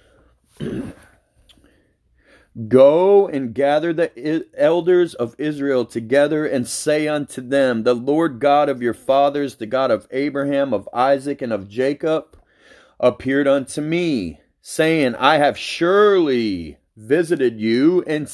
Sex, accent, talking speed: male, American, 120 wpm